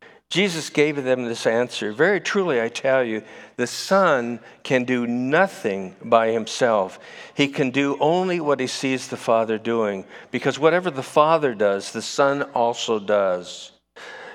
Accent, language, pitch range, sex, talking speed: American, English, 115-150 Hz, male, 150 wpm